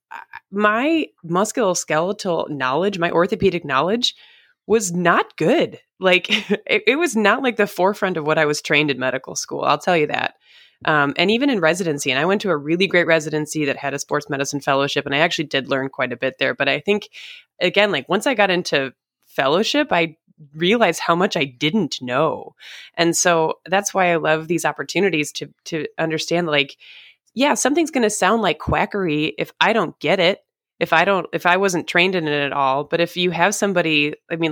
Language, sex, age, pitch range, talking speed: English, female, 20-39, 155-195 Hz, 200 wpm